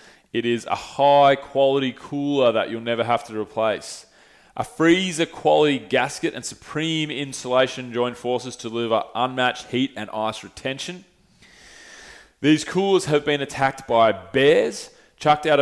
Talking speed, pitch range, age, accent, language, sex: 135 wpm, 115-140 Hz, 20-39, Australian, English, male